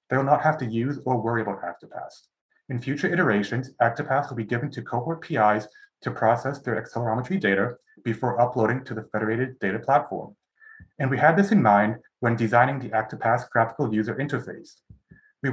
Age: 30-49